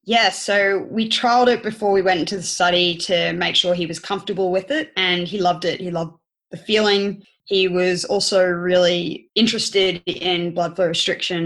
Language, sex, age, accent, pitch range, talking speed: English, female, 20-39, Australian, 175-200 Hz, 190 wpm